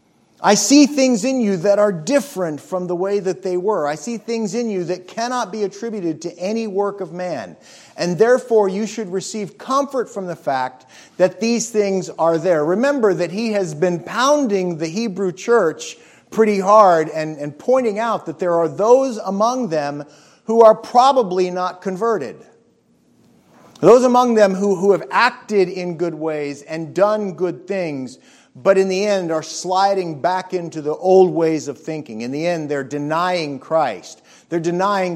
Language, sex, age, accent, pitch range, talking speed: English, male, 40-59, American, 160-215 Hz, 175 wpm